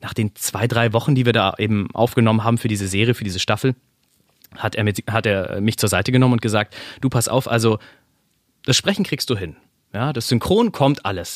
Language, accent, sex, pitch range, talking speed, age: German, German, male, 105-130 Hz, 220 wpm, 30-49